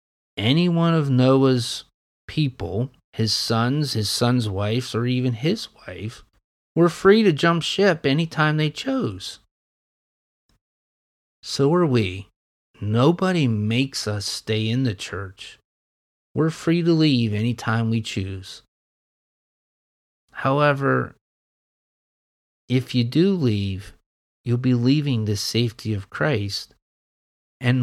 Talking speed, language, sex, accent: 115 wpm, English, male, American